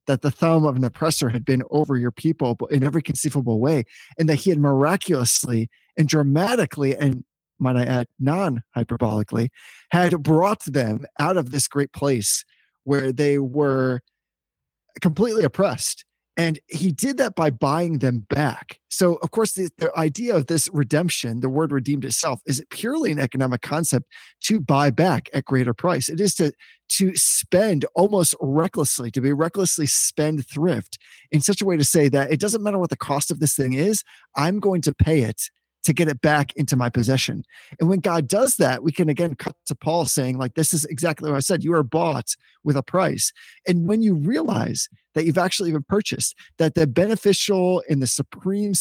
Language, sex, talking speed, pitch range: English, male, 190 wpm, 140-180 Hz